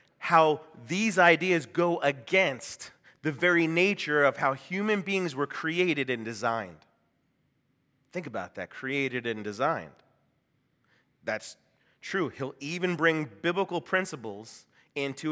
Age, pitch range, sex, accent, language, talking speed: 30-49, 135-175 Hz, male, American, English, 120 wpm